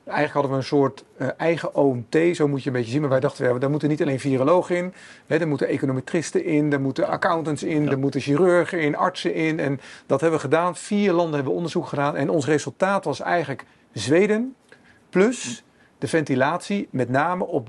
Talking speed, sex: 195 wpm, male